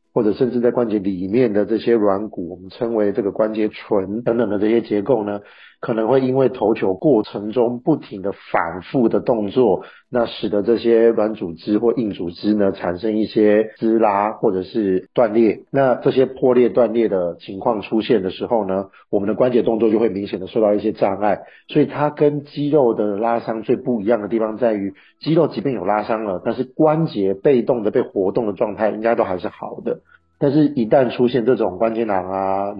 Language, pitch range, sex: Chinese, 100-120 Hz, male